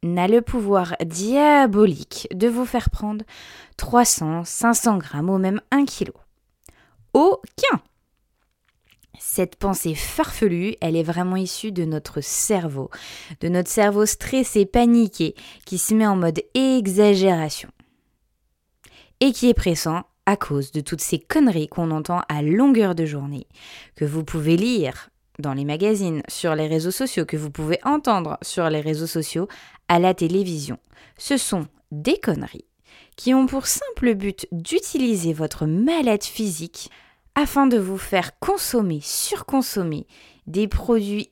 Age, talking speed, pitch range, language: 20-39, 140 wpm, 165-235 Hz, French